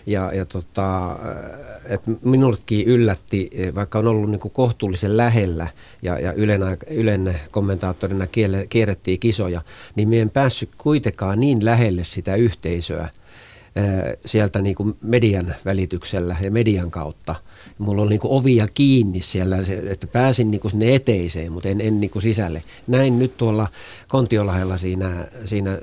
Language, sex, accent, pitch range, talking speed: Finnish, male, native, 95-115 Hz, 140 wpm